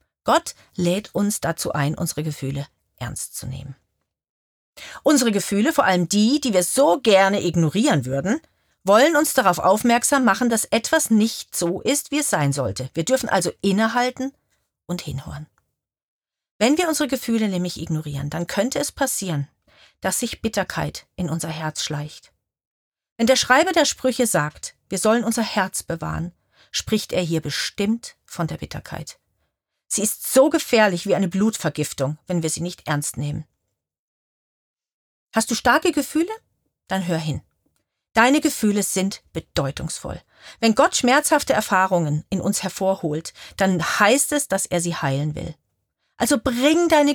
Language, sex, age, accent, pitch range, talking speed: German, female, 40-59, German, 165-250 Hz, 150 wpm